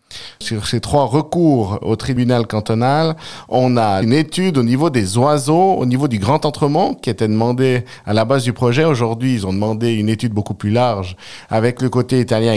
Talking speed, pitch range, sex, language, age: 195 wpm, 110-140 Hz, male, French, 50-69